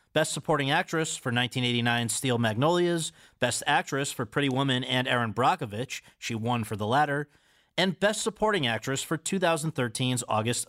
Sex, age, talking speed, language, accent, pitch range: male, 40-59, 150 wpm, English, American, 120-160 Hz